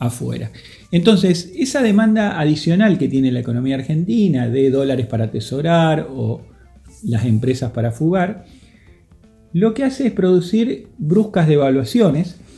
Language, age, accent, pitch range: Spanish, 40-59, Argentinian, 115-170 Hz